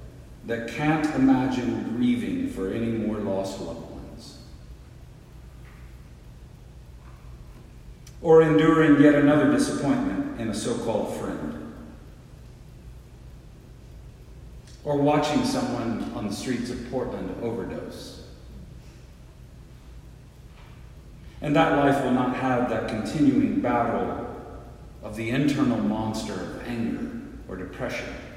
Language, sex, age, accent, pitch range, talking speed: English, male, 50-69, American, 105-150 Hz, 95 wpm